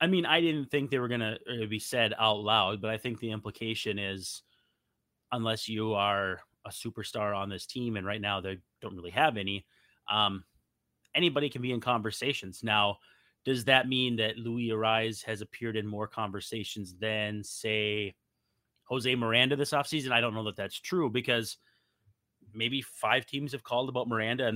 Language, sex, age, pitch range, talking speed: English, male, 30-49, 105-125 Hz, 180 wpm